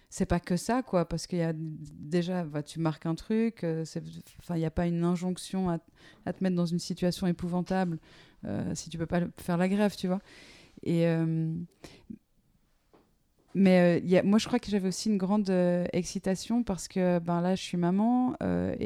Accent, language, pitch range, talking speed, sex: French, French, 170-190 Hz, 200 wpm, female